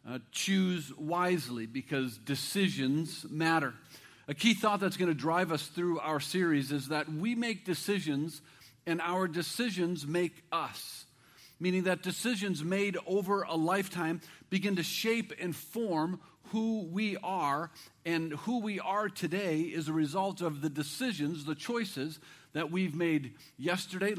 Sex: male